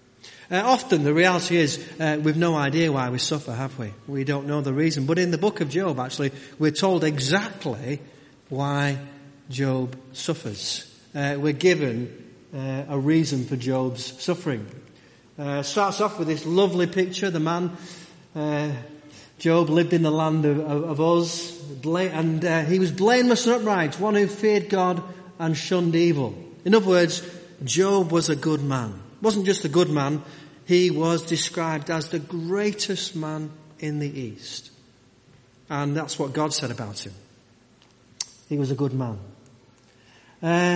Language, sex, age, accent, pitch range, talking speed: English, male, 30-49, British, 130-175 Hz, 160 wpm